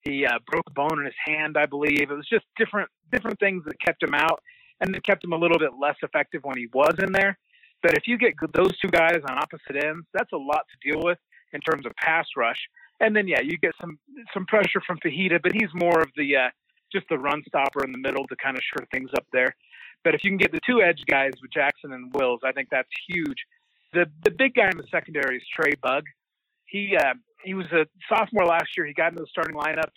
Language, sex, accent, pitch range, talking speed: English, male, American, 150-195 Hz, 250 wpm